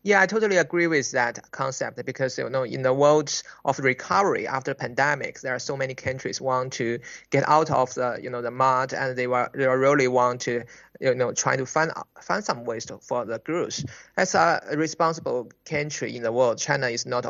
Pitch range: 130-170 Hz